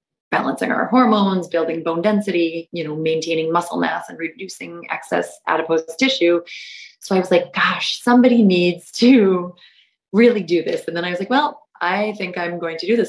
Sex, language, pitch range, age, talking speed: female, English, 165-205 Hz, 30-49, 185 wpm